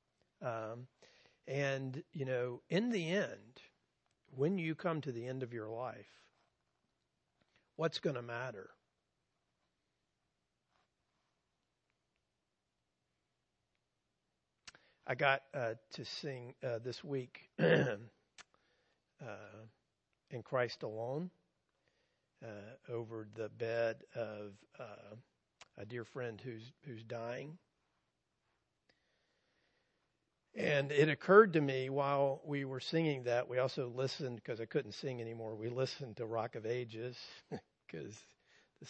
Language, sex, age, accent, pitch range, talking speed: English, male, 50-69, American, 110-140 Hz, 110 wpm